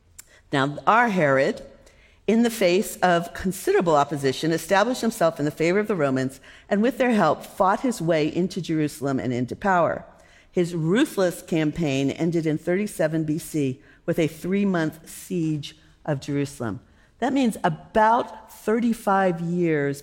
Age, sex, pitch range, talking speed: 50-69, female, 140-190 Hz, 145 wpm